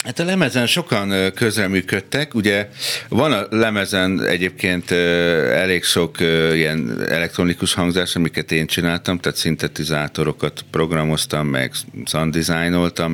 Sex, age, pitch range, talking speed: male, 50-69, 75-95 Hz, 105 wpm